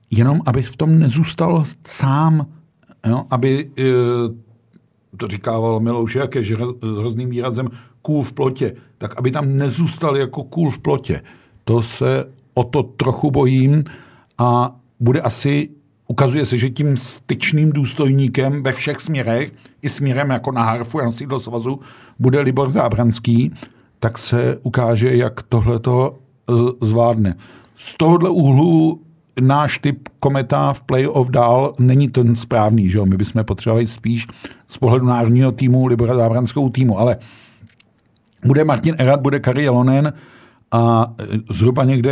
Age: 50-69